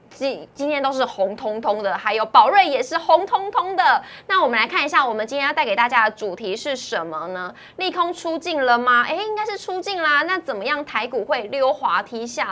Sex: female